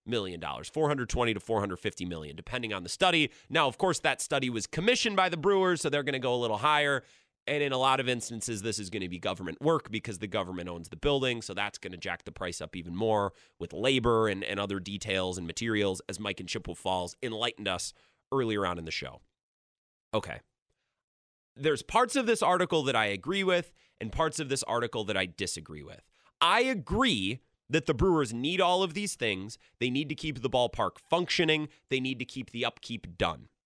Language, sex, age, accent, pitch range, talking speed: English, male, 30-49, American, 100-155 Hz, 215 wpm